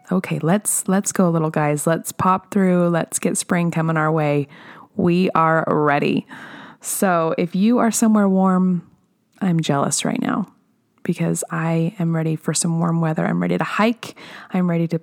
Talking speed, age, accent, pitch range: 170 wpm, 20-39, American, 165-220 Hz